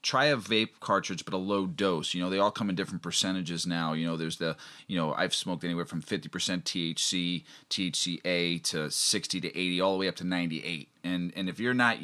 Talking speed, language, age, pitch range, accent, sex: 225 wpm, English, 30-49, 85-105 Hz, American, male